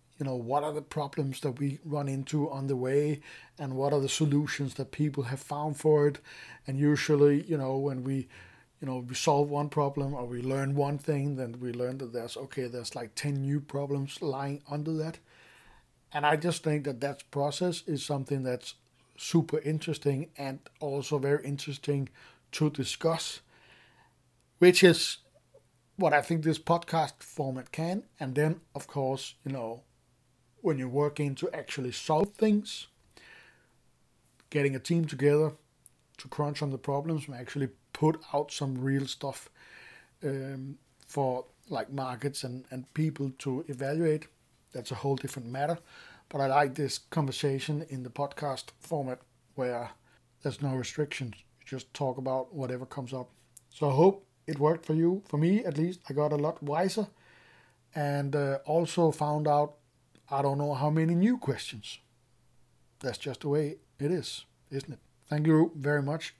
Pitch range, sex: 130-150 Hz, male